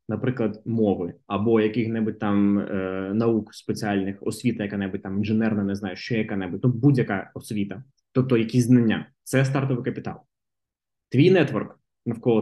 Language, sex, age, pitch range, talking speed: Ukrainian, male, 20-39, 110-145 Hz, 135 wpm